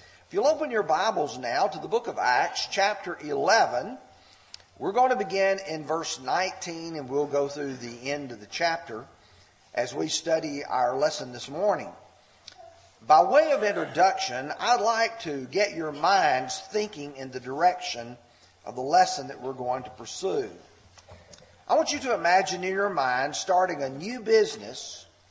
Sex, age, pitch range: male, 40-59, 140-220 Hz